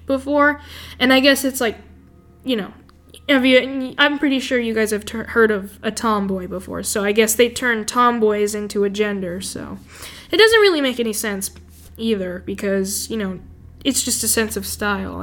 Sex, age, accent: female, 10-29, American